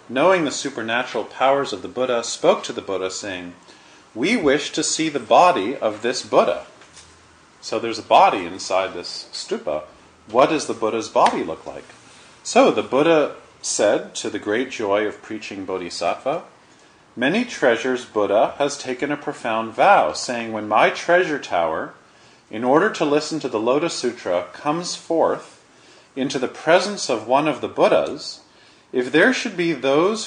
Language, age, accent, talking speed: English, 40-59, American, 165 wpm